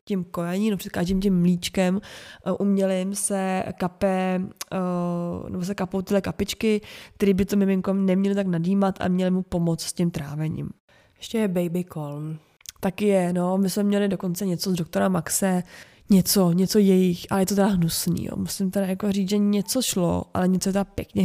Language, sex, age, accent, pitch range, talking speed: Czech, female, 20-39, native, 180-195 Hz, 185 wpm